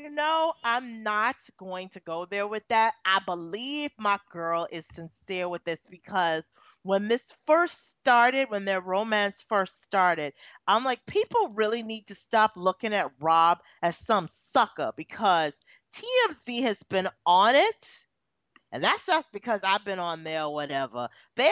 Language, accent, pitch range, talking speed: English, American, 175-220 Hz, 160 wpm